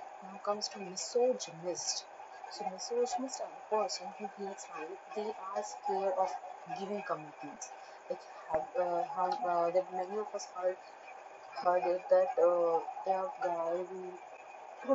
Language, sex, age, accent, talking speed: English, female, 30-49, Indian, 150 wpm